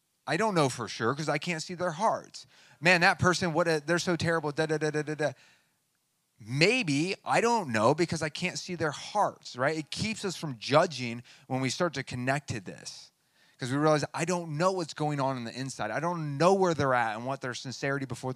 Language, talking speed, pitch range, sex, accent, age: English, 230 wpm, 115-160 Hz, male, American, 30-49